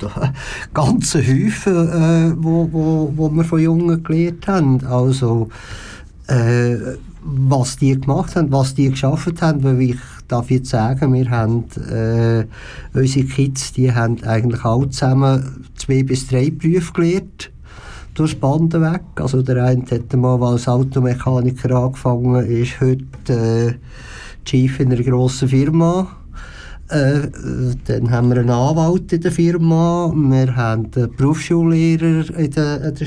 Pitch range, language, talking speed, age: 125-155 Hz, German, 140 wpm, 50-69